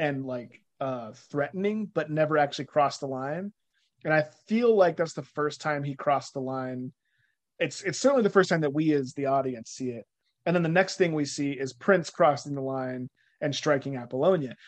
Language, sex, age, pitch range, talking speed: English, male, 30-49, 140-170 Hz, 205 wpm